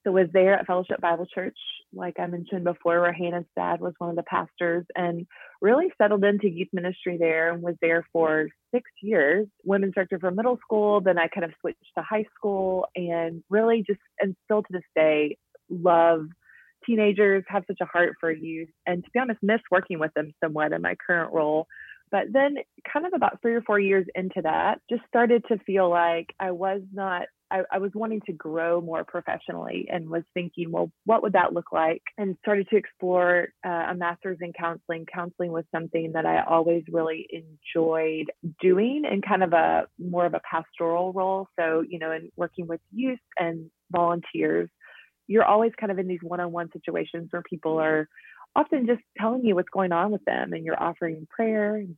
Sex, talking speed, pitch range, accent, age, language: female, 195 wpm, 170-205 Hz, American, 20-39, English